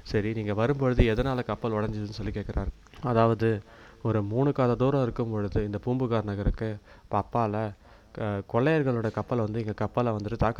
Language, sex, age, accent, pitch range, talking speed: Tamil, male, 20-39, native, 100-115 Hz, 140 wpm